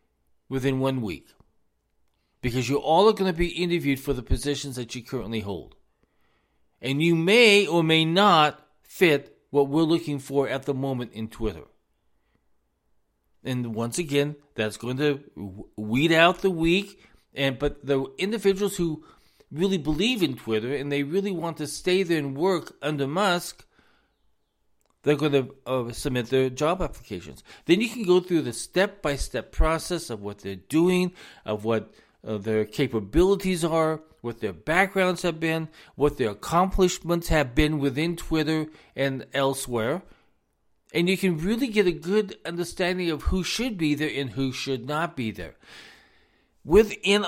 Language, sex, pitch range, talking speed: English, male, 125-175 Hz, 155 wpm